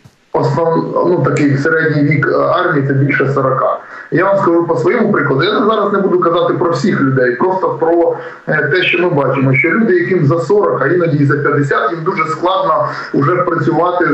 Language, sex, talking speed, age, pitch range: Ukrainian, male, 185 wpm, 20-39, 150-185 Hz